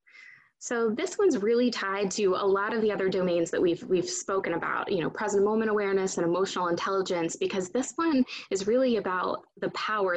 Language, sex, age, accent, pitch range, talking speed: English, female, 20-39, American, 185-230 Hz, 195 wpm